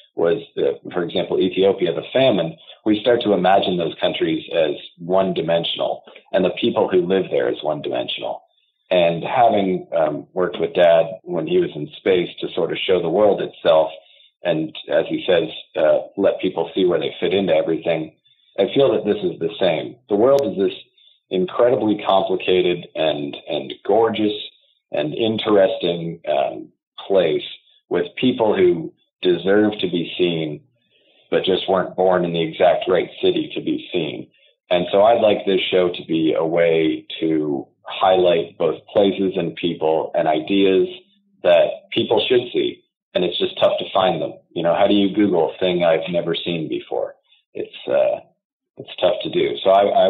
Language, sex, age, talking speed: English, male, 40-59, 170 wpm